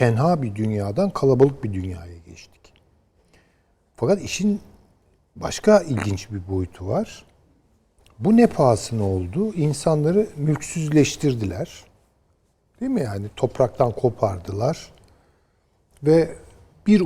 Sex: male